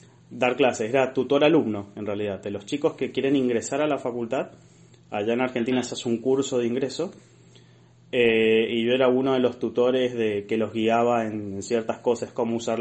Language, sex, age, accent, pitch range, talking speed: Spanish, male, 20-39, Argentinian, 110-130 Hz, 200 wpm